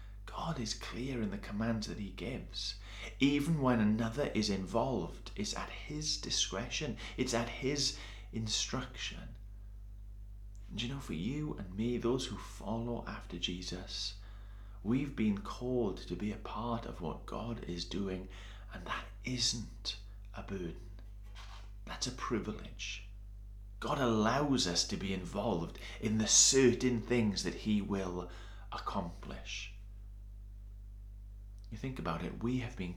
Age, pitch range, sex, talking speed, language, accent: 30-49, 100-115 Hz, male, 135 wpm, English, British